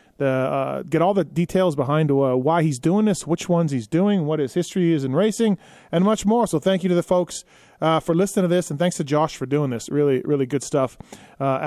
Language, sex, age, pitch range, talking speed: English, male, 30-49, 145-180 Hz, 245 wpm